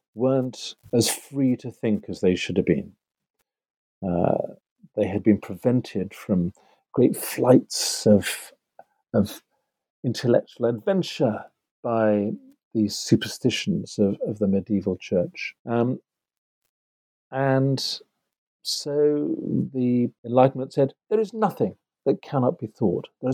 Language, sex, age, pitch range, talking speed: English, male, 50-69, 110-150 Hz, 115 wpm